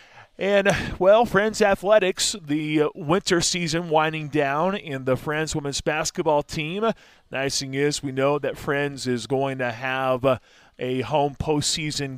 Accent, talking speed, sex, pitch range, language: American, 145 wpm, male, 130-150 Hz, English